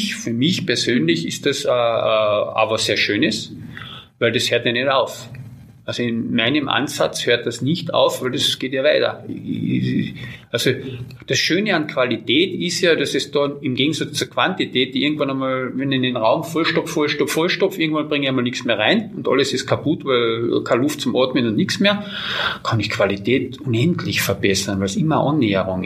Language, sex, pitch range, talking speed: German, male, 115-160 Hz, 185 wpm